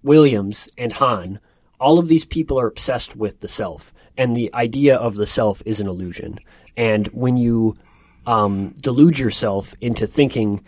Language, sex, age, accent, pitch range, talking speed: English, male, 30-49, American, 100-120 Hz, 165 wpm